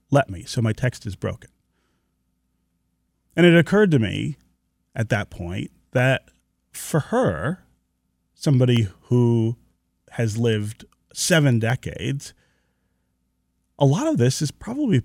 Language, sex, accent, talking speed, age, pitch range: English, male, American, 120 wpm, 30-49, 85-140 Hz